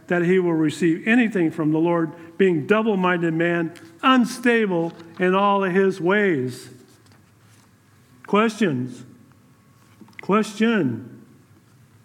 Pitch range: 120-190 Hz